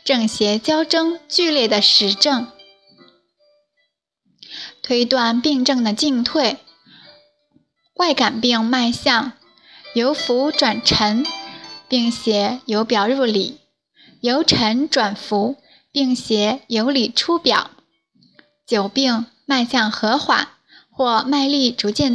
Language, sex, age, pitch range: Chinese, female, 10-29, 220-285 Hz